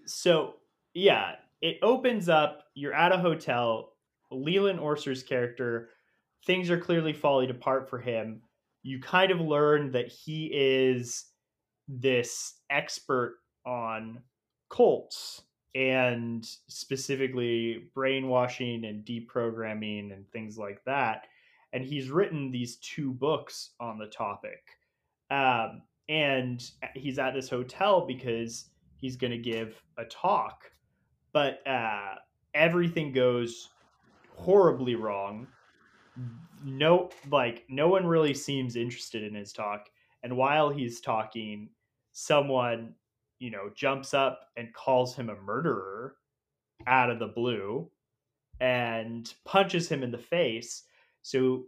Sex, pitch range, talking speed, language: male, 115-145 Hz, 120 wpm, English